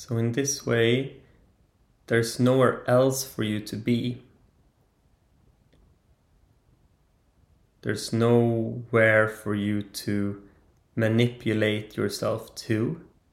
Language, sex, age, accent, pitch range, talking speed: English, male, 30-49, Swedish, 95-115 Hz, 85 wpm